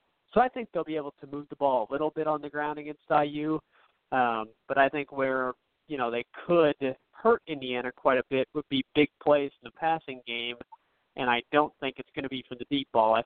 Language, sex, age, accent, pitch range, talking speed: English, male, 40-59, American, 125-150 Hz, 240 wpm